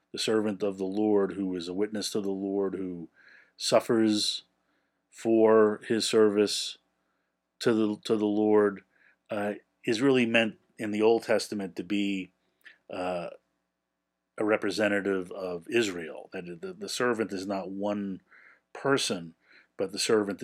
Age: 40-59